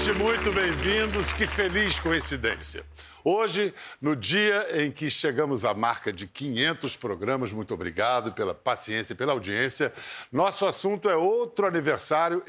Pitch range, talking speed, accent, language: 125-165 Hz, 135 wpm, Brazilian, Portuguese